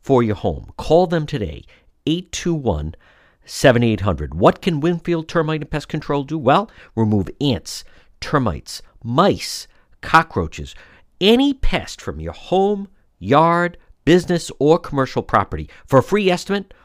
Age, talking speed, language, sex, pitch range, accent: 50-69, 125 wpm, English, male, 105-165 Hz, American